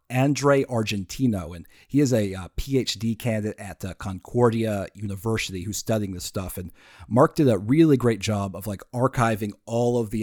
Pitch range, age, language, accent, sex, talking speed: 95-120 Hz, 40-59, English, American, male, 175 wpm